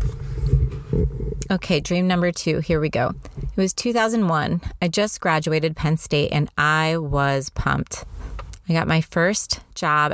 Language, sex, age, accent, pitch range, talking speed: English, female, 30-49, American, 140-175 Hz, 140 wpm